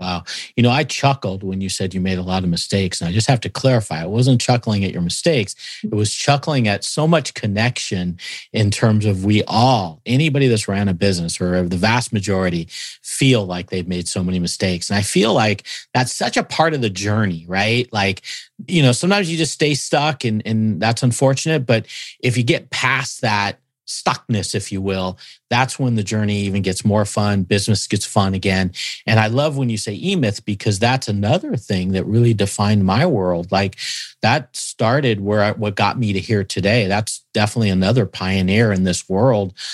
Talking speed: 200 wpm